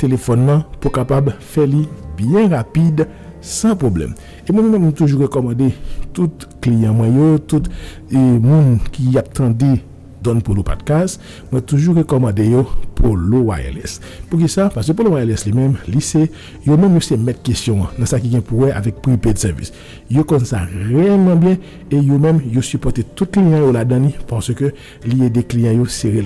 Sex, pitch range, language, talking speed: male, 115-160 Hz, French, 195 wpm